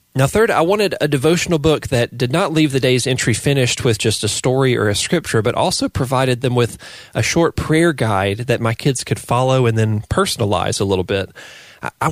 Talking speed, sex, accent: 215 wpm, male, American